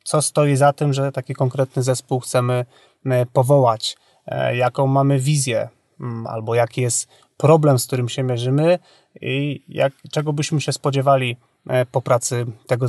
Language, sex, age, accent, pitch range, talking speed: Polish, male, 30-49, native, 130-155 Hz, 135 wpm